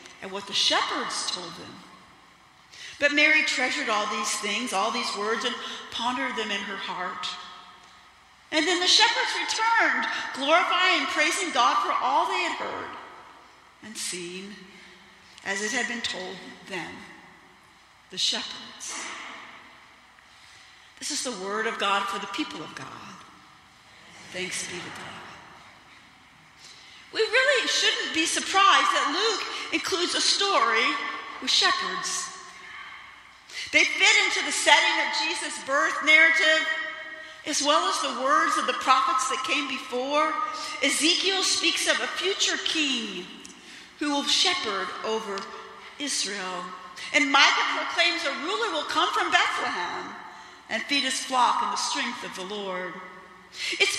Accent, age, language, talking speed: American, 50-69, English, 135 wpm